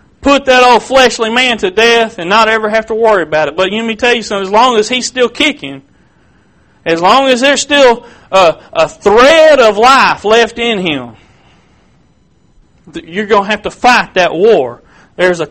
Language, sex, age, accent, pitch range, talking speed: English, male, 40-59, American, 175-245 Hz, 190 wpm